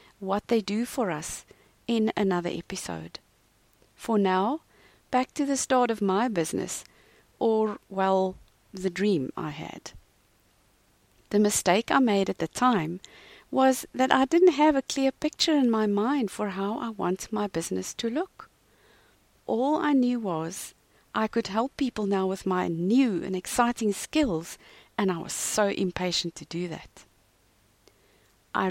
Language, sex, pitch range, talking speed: English, female, 180-240 Hz, 155 wpm